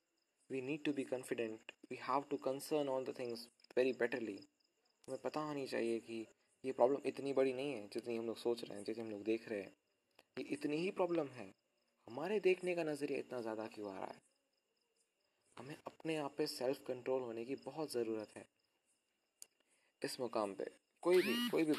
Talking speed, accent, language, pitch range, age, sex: 195 wpm, native, Hindi, 115-135 Hz, 20-39, male